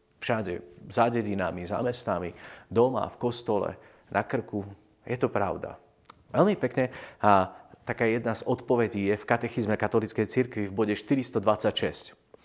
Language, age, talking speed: Slovak, 40-59, 135 wpm